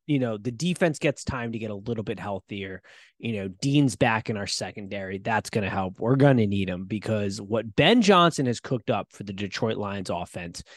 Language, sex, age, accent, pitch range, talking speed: English, male, 20-39, American, 110-155 Hz, 225 wpm